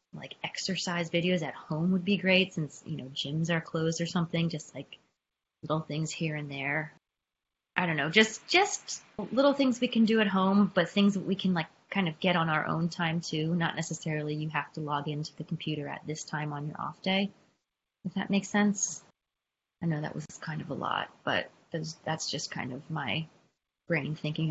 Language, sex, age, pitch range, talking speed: English, female, 20-39, 150-175 Hz, 210 wpm